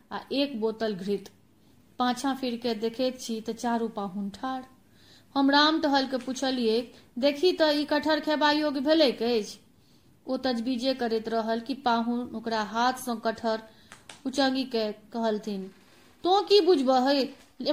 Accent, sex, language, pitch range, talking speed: native, female, Hindi, 225-275 Hz, 145 wpm